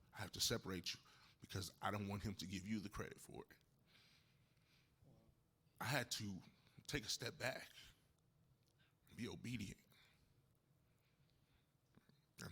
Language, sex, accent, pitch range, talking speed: English, male, American, 110-130 Hz, 135 wpm